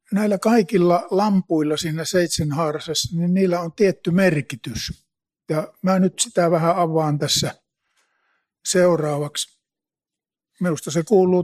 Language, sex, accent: Finnish, male, native